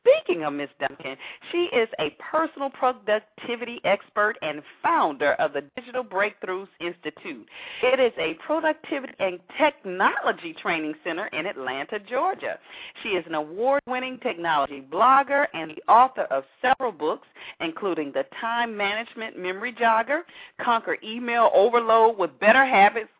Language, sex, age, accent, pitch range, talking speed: English, female, 40-59, American, 200-310 Hz, 135 wpm